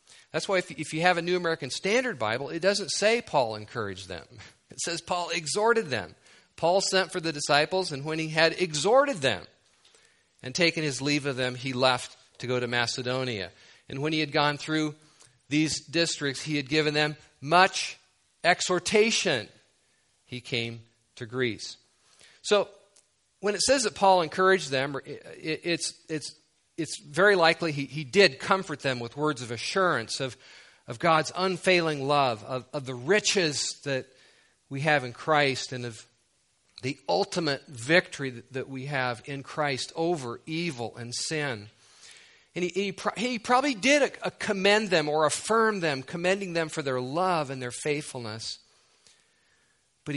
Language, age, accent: English, 40-59, American